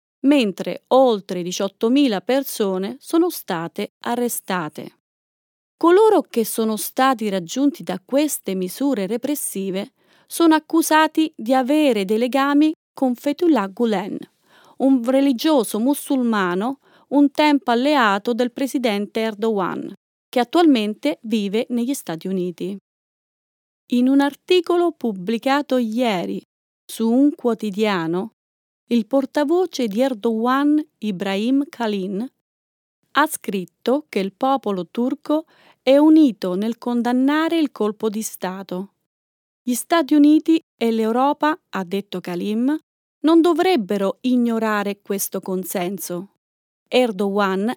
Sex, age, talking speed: female, 30-49, 105 wpm